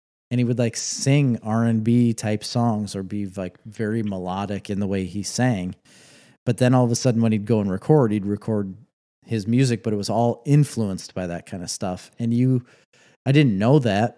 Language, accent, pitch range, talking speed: English, American, 105-125 Hz, 205 wpm